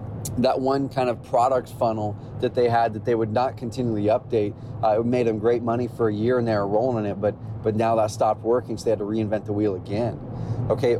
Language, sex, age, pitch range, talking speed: English, male, 30-49, 115-130 Hz, 240 wpm